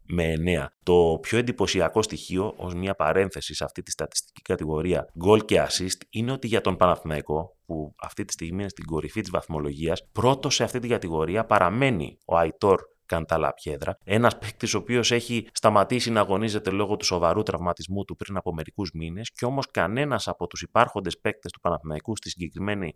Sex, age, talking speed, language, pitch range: male, 30-49, 185 wpm, Greek, 80-110 Hz